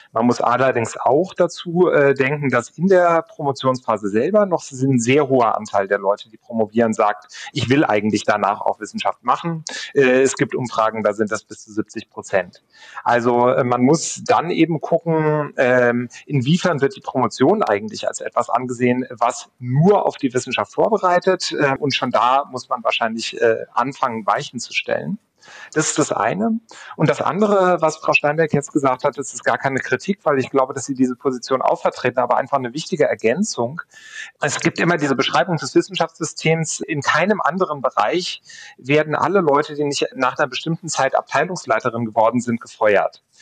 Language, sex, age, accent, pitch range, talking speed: German, male, 40-59, German, 125-165 Hz, 180 wpm